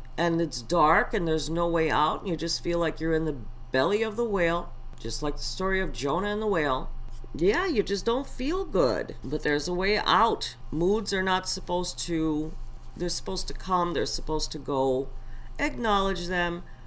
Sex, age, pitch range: female, 50-69, 145-195 Hz